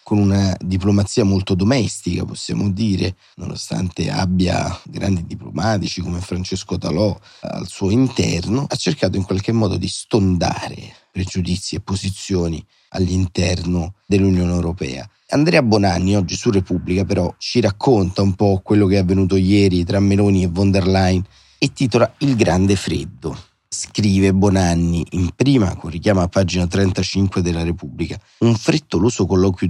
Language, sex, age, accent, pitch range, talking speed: Italian, male, 30-49, native, 85-100 Hz, 140 wpm